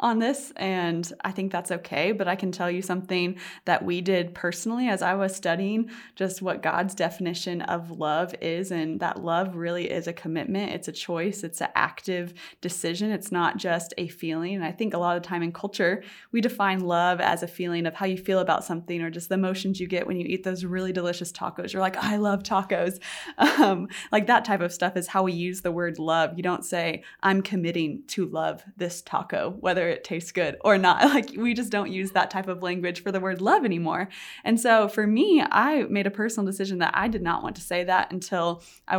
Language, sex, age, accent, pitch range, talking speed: English, female, 20-39, American, 170-195 Hz, 230 wpm